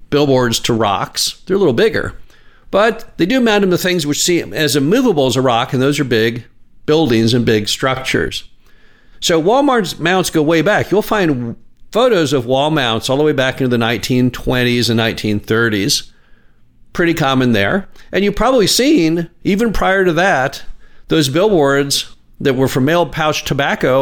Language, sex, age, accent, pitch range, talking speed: English, male, 50-69, American, 120-165 Hz, 170 wpm